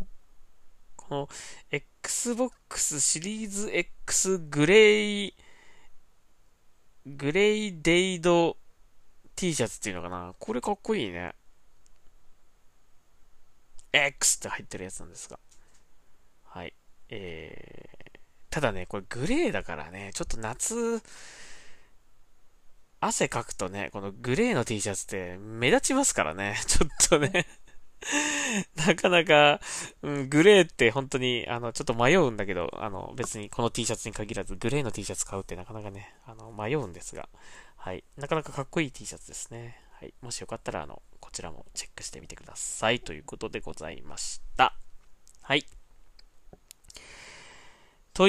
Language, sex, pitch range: Japanese, male, 100-170 Hz